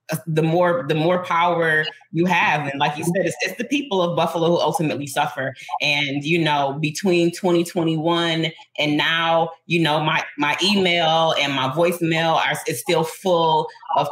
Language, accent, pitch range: English, American, 155-190 Hz